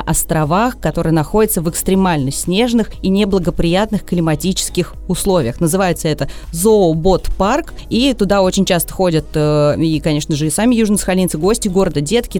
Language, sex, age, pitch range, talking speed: Russian, female, 20-39, 180-220 Hz, 130 wpm